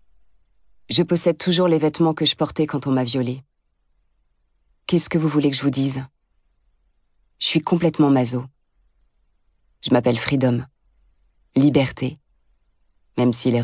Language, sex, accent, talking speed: French, female, French, 135 wpm